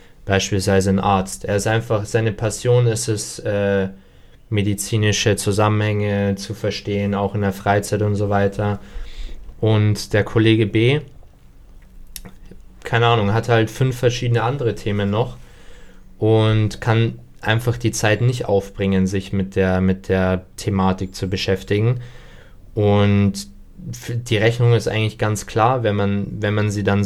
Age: 20-39